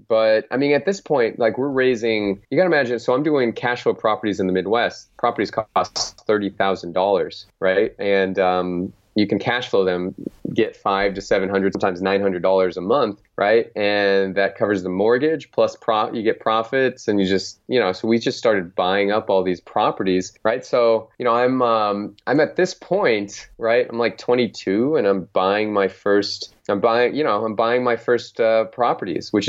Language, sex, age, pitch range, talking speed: English, male, 20-39, 95-120 Hz, 200 wpm